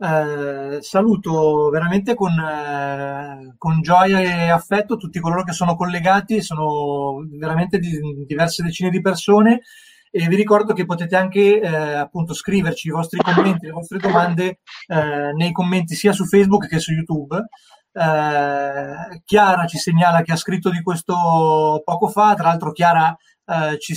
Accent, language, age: native, Italian, 30-49